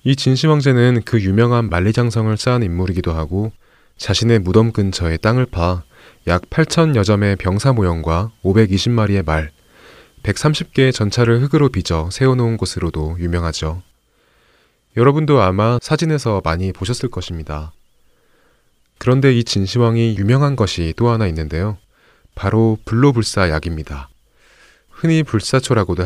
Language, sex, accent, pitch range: Korean, male, native, 85-120 Hz